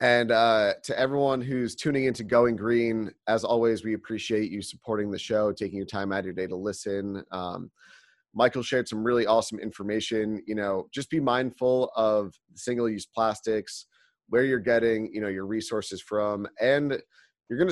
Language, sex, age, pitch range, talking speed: English, male, 30-49, 100-120 Hz, 175 wpm